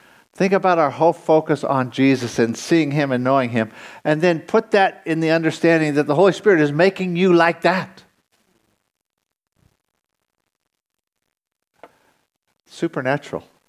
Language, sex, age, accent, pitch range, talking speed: English, male, 60-79, American, 120-165 Hz, 130 wpm